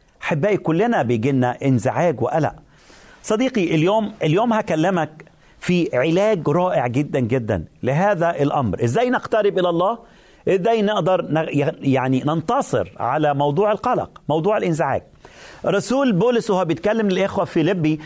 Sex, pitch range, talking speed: male, 140-195 Hz, 125 wpm